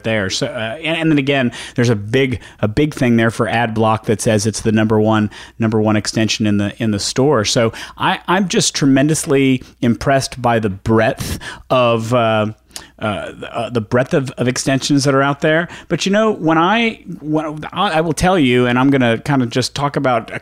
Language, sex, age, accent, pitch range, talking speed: English, male, 40-59, American, 110-140 Hz, 215 wpm